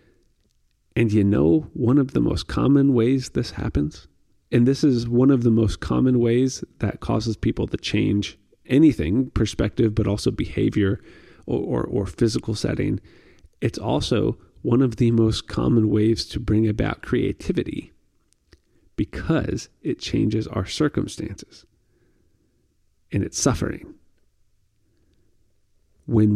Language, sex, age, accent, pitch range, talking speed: English, male, 30-49, American, 100-120 Hz, 125 wpm